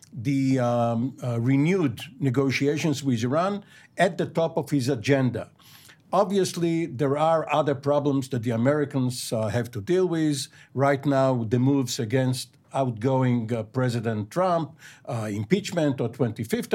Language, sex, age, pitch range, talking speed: English, male, 60-79, 130-160 Hz, 140 wpm